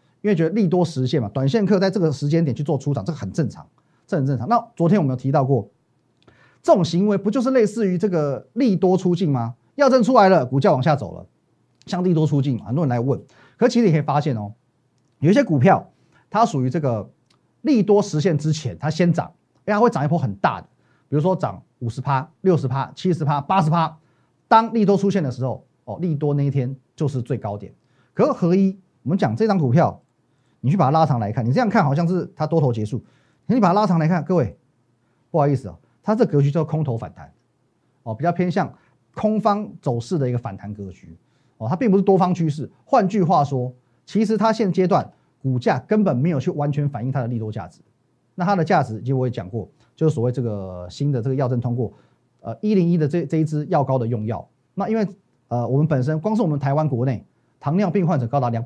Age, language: 30-49, Chinese